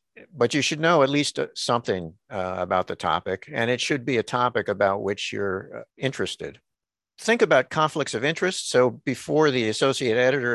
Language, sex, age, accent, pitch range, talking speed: English, male, 60-79, American, 95-130 Hz, 175 wpm